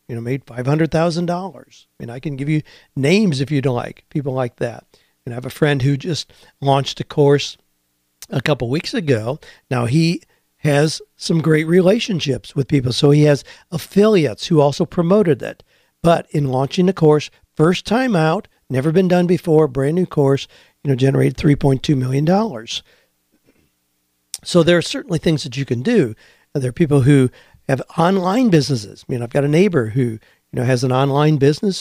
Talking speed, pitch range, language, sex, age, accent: 190 wpm, 130-170 Hz, English, male, 50-69, American